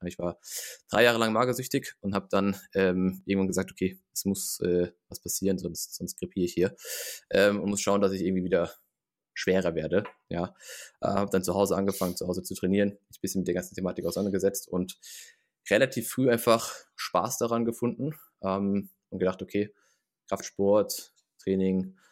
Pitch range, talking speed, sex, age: 95-105 Hz, 175 wpm, male, 20-39